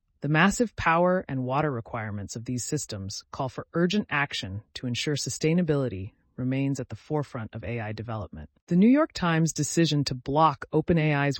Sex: female